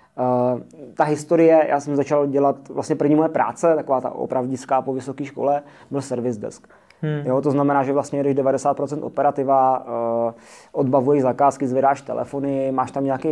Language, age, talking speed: Czech, 20-39, 155 wpm